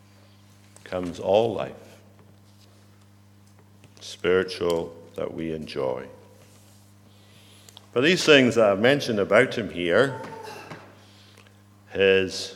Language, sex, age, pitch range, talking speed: English, male, 60-79, 100-105 Hz, 80 wpm